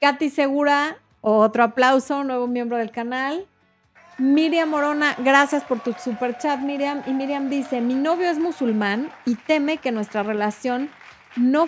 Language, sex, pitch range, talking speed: Spanish, female, 210-275 Hz, 150 wpm